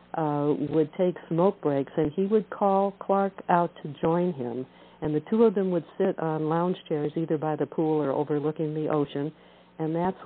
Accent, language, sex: American, English, female